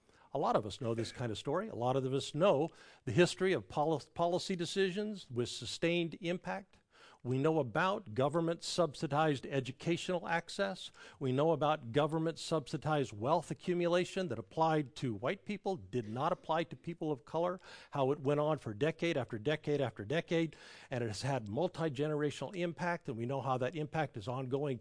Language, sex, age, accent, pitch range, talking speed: English, male, 50-69, American, 125-170 Hz, 170 wpm